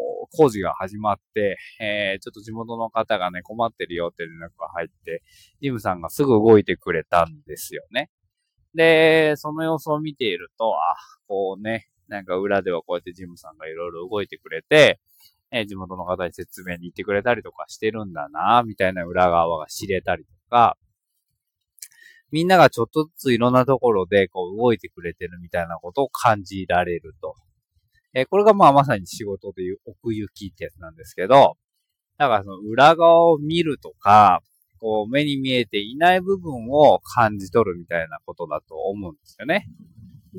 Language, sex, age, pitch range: Japanese, male, 20-39, 95-145 Hz